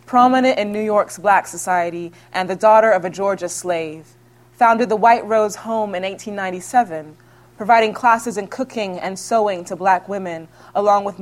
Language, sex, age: English, female, 20-39